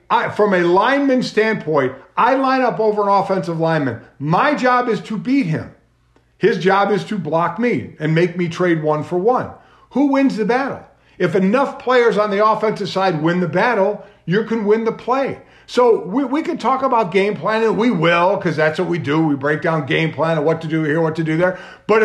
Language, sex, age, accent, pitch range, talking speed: English, male, 50-69, American, 170-230 Hz, 220 wpm